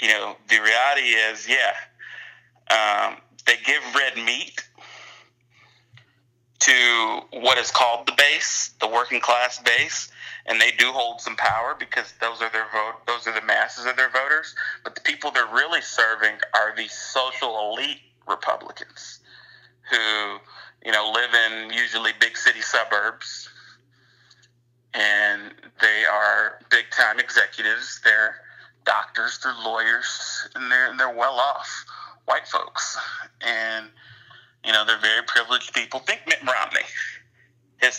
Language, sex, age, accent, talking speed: English, male, 30-49, American, 135 wpm